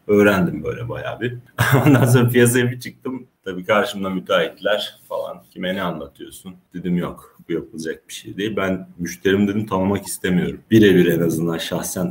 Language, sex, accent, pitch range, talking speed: Turkish, male, native, 90-115 Hz, 150 wpm